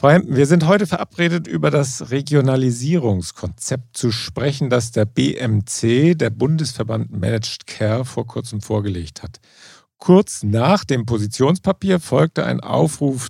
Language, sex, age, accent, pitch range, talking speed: German, male, 40-59, German, 105-145 Hz, 120 wpm